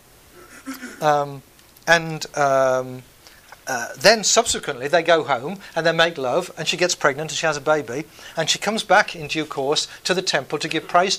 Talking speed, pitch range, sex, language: 190 wpm, 150-185 Hz, male, English